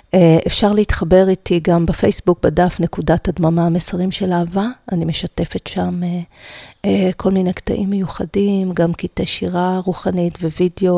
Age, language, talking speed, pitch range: 40-59, Hebrew, 140 wpm, 175-225 Hz